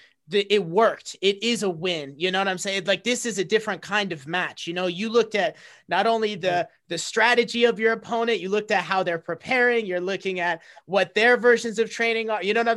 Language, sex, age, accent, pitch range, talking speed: English, male, 30-49, American, 180-225 Hz, 235 wpm